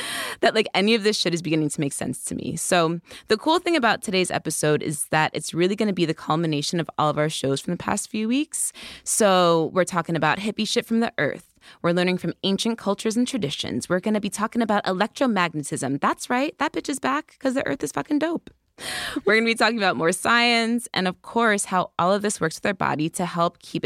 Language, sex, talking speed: English, female, 240 wpm